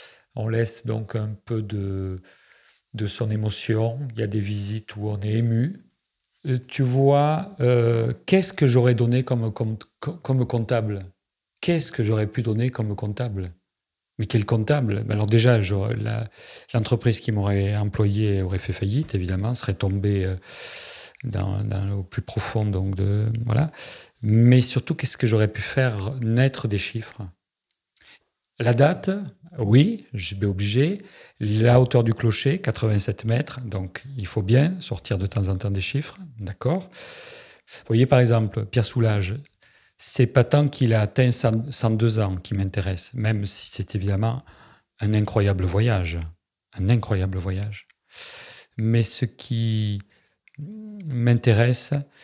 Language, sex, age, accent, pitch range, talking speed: French, male, 40-59, French, 105-125 Hz, 140 wpm